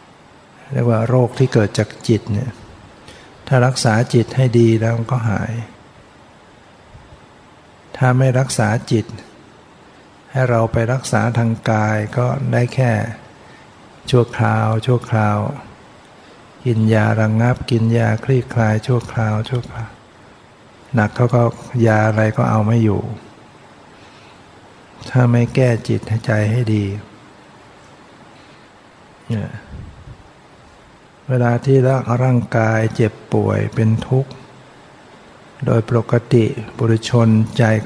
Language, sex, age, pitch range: Thai, male, 60-79, 110-125 Hz